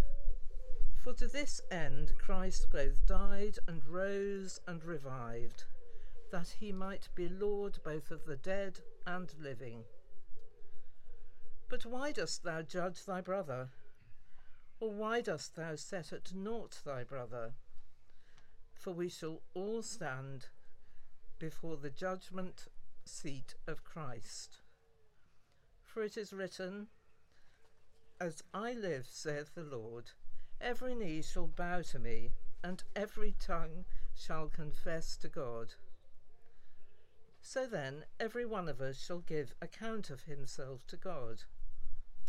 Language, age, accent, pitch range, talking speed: English, 60-79, British, 135-200 Hz, 120 wpm